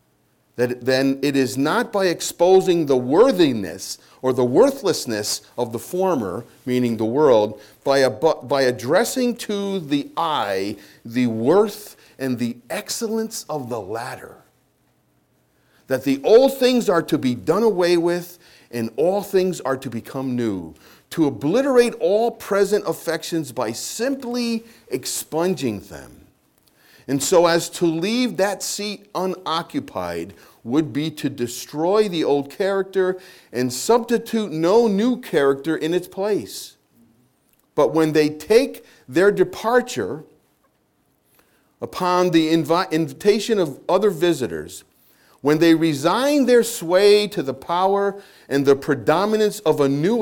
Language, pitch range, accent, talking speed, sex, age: English, 130-205 Hz, American, 130 wpm, male, 40-59